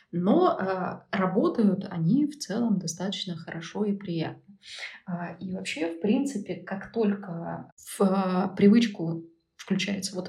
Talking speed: 130 wpm